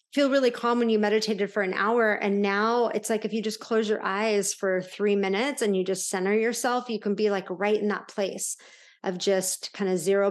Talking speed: 235 wpm